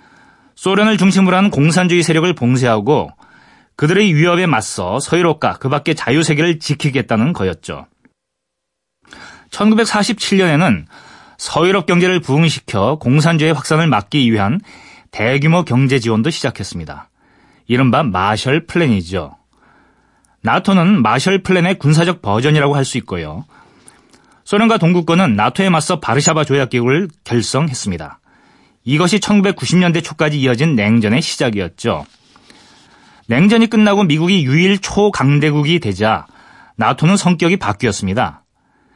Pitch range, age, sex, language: 125-180 Hz, 30-49, male, Korean